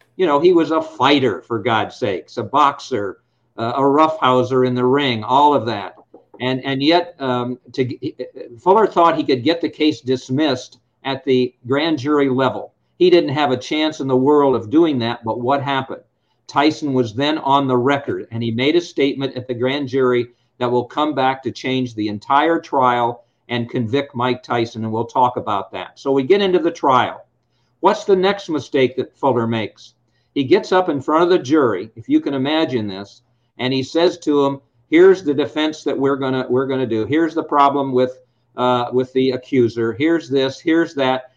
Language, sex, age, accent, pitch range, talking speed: English, male, 50-69, American, 125-155 Hz, 200 wpm